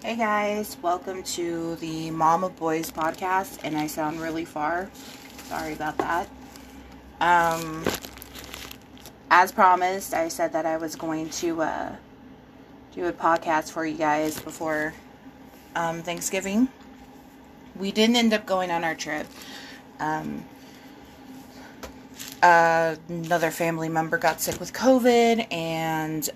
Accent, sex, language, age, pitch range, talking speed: American, female, English, 20-39, 160-230 Hz, 125 wpm